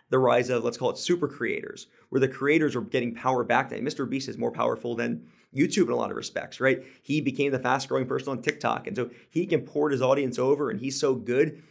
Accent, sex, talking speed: American, male, 240 wpm